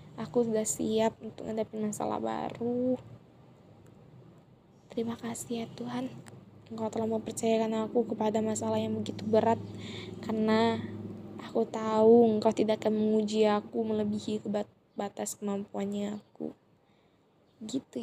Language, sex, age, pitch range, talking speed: Indonesian, female, 10-29, 205-225 Hz, 110 wpm